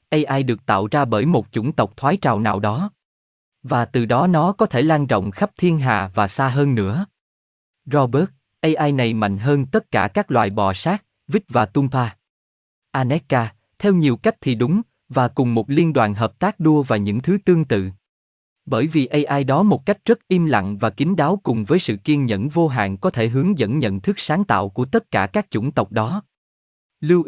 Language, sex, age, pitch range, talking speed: Vietnamese, male, 20-39, 115-170 Hz, 210 wpm